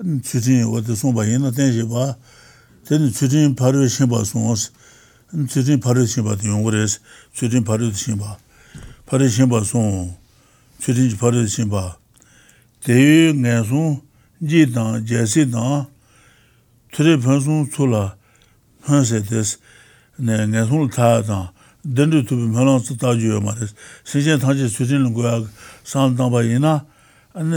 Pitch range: 115-140 Hz